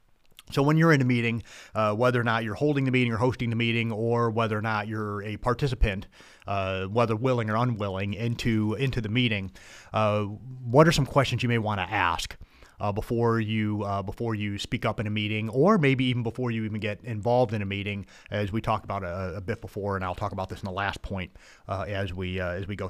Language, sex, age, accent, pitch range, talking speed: English, male, 30-49, American, 100-120 Hz, 235 wpm